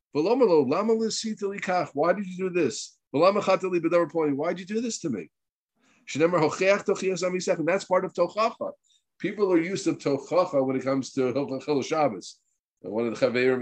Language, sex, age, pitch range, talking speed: English, male, 50-69, 120-180 Hz, 140 wpm